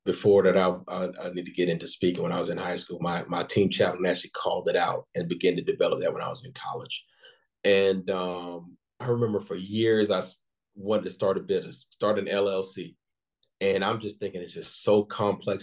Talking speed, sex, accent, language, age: 220 wpm, male, American, English, 40-59